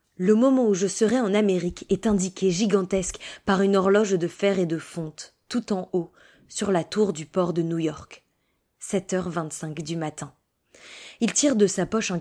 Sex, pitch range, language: female, 175-215 Hz, French